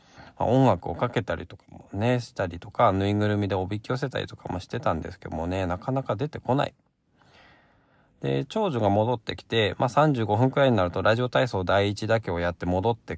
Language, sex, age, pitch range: Japanese, male, 20-39, 90-120 Hz